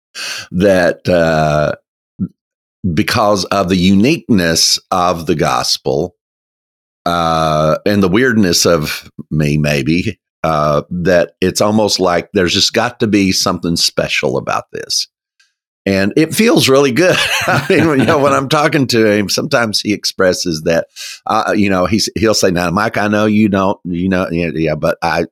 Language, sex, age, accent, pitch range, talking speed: English, male, 50-69, American, 80-110 Hz, 155 wpm